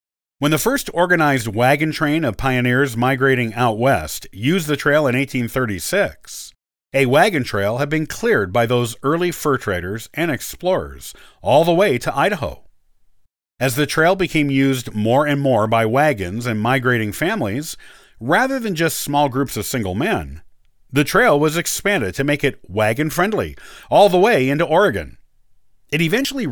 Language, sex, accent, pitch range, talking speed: English, male, American, 115-165 Hz, 160 wpm